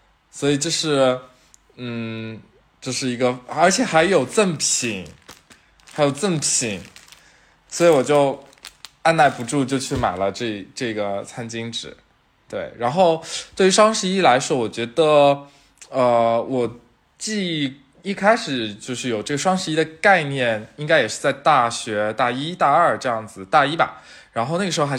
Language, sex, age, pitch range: Chinese, male, 20-39, 115-160 Hz